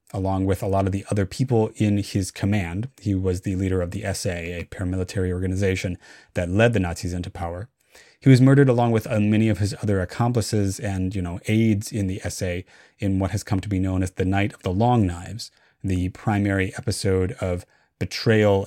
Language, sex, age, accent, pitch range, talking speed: English, male, 30-49, American, 95-115 Hz, 205 wpm